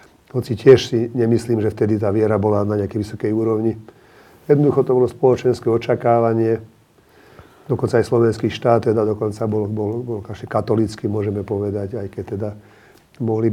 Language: Slovak